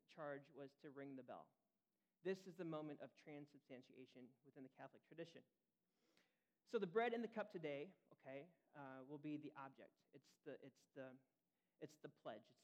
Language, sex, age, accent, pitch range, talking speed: English, male, 40-59, American, 145-185 Hz, 175 wpm